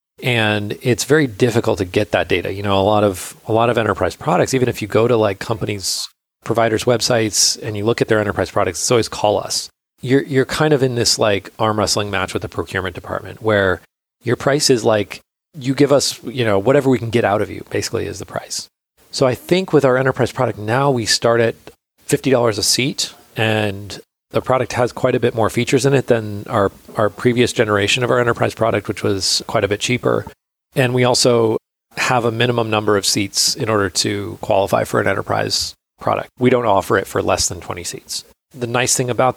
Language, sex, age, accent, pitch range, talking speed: English, male, 30-49, American, 105-125 Hz, 220 wpm